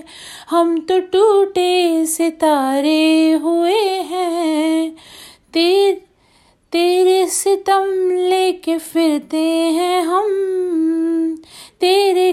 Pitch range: 255-360 Hz